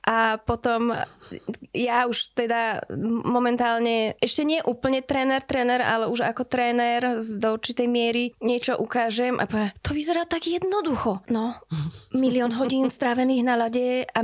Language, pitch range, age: Slovak, 225-245 Hz, 20-39